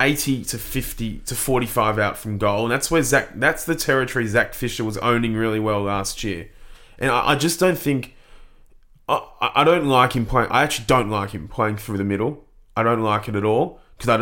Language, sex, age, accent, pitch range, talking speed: English, male, 20-39, Australian, 105-135 Hz, 215 wpm